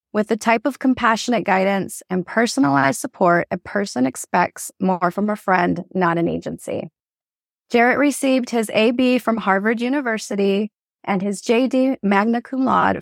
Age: 20-39